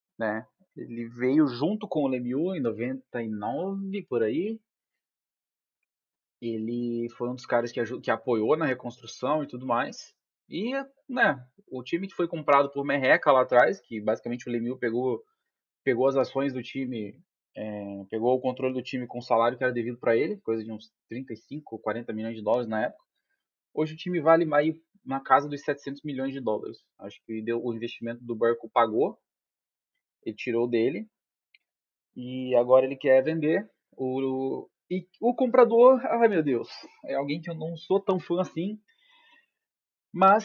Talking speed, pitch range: 170 wpm, 120-180 Hz